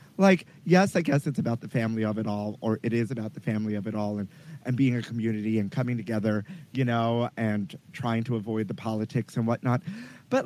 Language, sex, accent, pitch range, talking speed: English, male, American, 120-165 Hz, 225 wpm